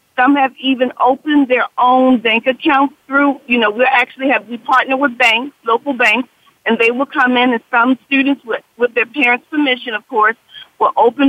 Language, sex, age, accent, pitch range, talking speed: English, female, 40-59, American, 235-280 Hz, 195 wpm